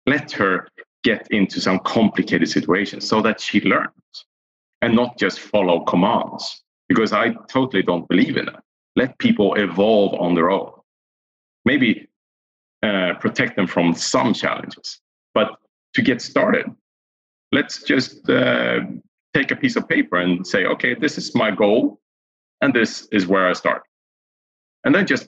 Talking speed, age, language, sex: 150 wpm, 40-59, English, male